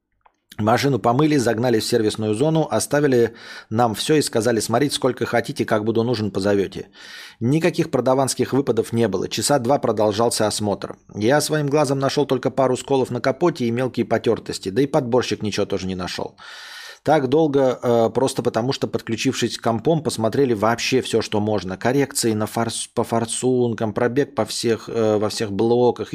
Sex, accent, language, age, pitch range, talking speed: male, native, Russian, 20-39, 110-135 Hz, 160 wpm